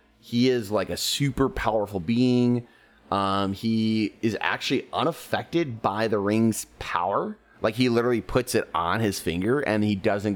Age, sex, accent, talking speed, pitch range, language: 30-49, male, American, 155 wpm, 95-115 Hz, English